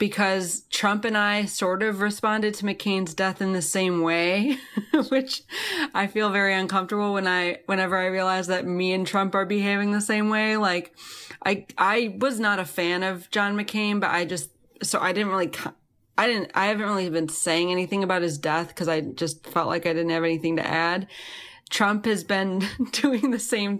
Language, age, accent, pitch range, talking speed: English, 20-39, American, 175-220 Hz, 195 wpm